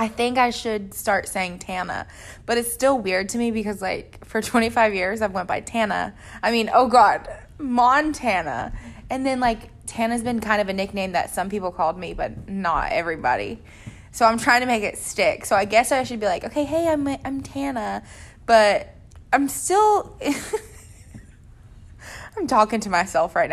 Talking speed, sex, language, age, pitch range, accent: 180 wpm, female, English, 20-39, 175-235 Hz, American